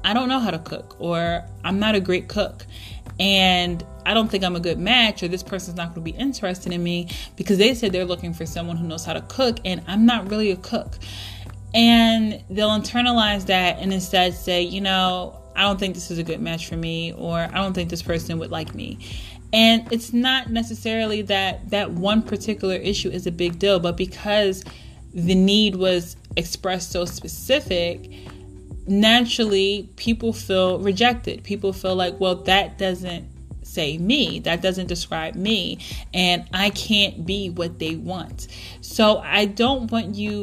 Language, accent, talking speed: English, American, 185 wpm